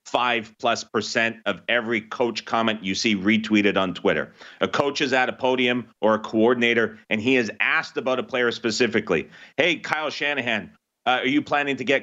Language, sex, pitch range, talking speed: English, male, 110-135 Hz, 190 wpm